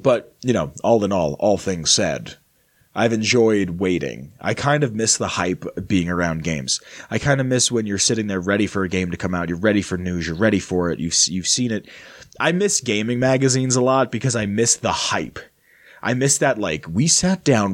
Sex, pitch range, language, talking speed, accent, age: male, 100-130 Hz, English, 225 wpm, American, 30-49